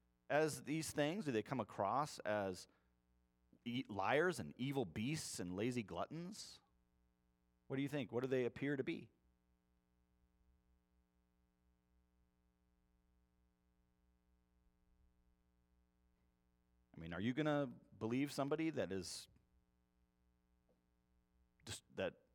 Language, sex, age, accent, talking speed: English, male, 30-49, American, 100 wpm